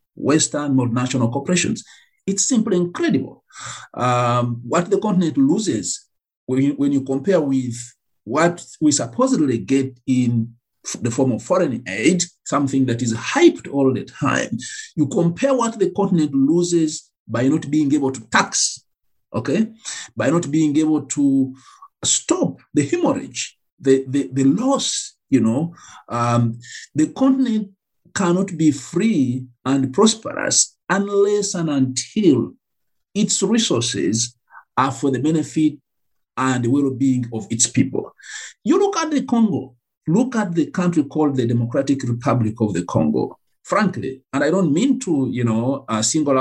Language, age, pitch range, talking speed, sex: English, 50-69, 130-190 Hz, 145 wpm, male